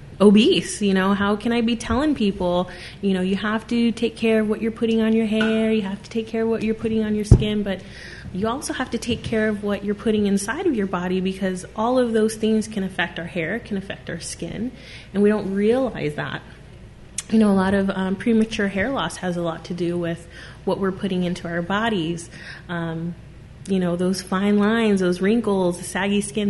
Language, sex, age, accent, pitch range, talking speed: English, female, 30-49, American, 180-215 Hz, 225 wpm